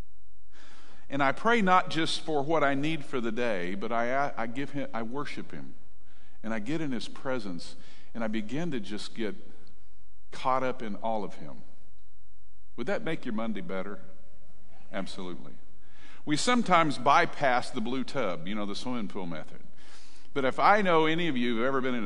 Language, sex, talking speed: English, male, 190 wpm